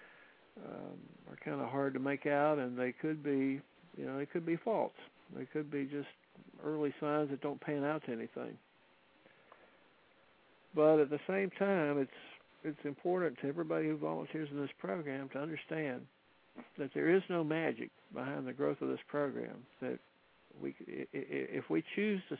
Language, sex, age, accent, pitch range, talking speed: English, male, 60-79, American, 125-155 Hz, 170 wpm